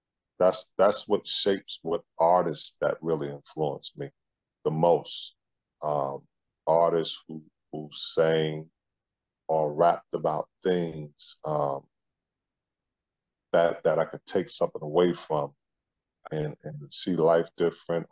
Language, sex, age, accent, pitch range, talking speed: English, male, 40-59, American, 80-90 Hz, 115 wpm